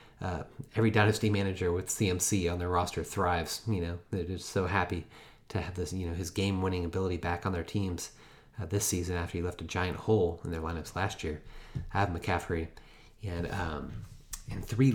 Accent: American